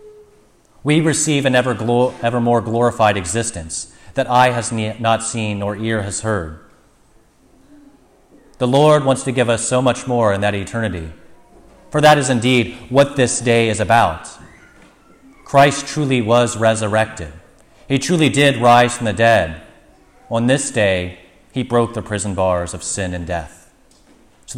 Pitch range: 105-130 Hz